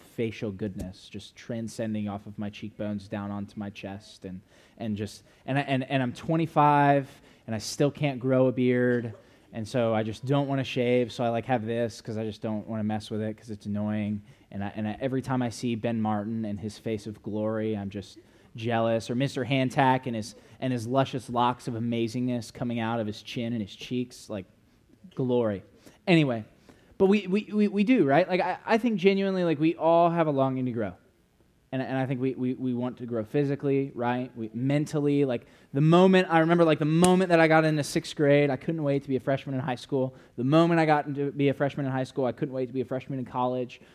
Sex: male